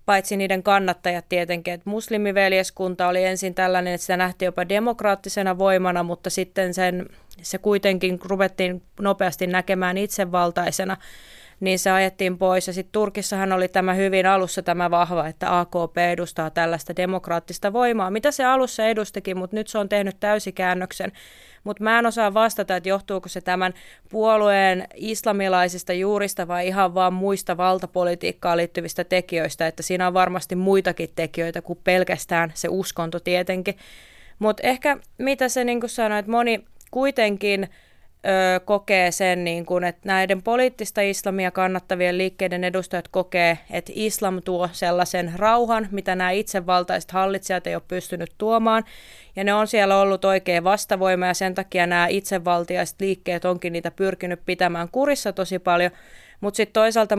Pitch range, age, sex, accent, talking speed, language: 180-200 Hz, 20-39, female, native, 145 wpm, Finnish